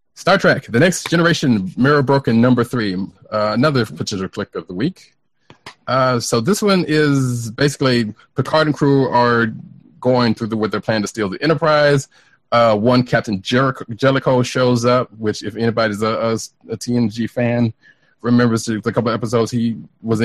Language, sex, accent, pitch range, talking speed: English, male, American, 100-125 Hz, 170 wpm